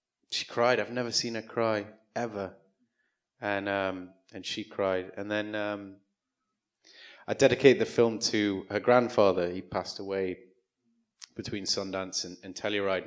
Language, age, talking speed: English, 30-49, 140 wpm